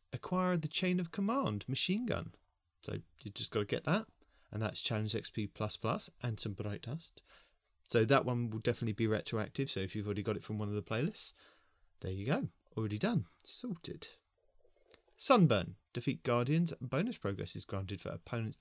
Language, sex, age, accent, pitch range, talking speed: English, male, 30-49, British, 100-150 Hz, 185 wpm